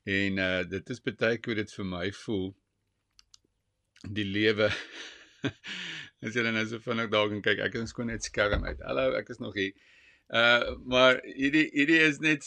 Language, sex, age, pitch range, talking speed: English, male, 50-69, 100-130 Hz, 185 wpm